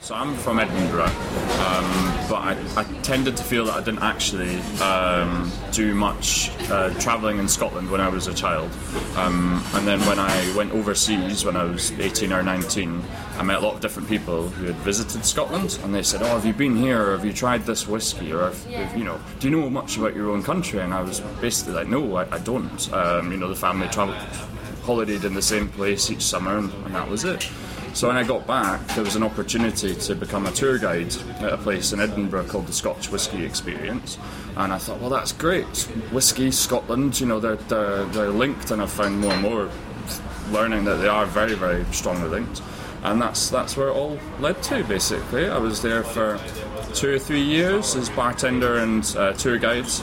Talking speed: 215 wpm